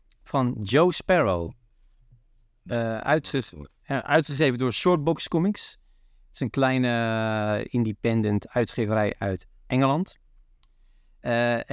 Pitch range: 115-145 Hz